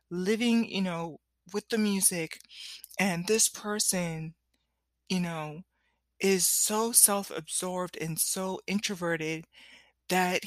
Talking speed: 105 wpm